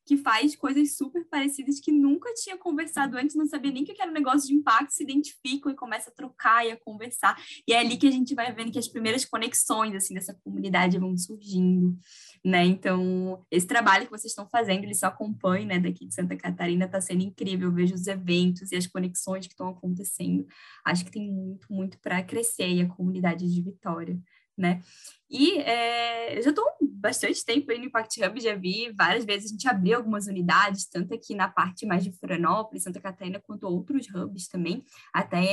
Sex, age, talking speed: female, 10-29, 205 wpm